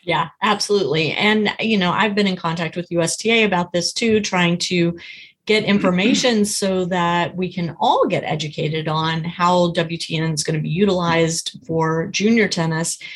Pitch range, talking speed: 170-215 Hz, 165 wpm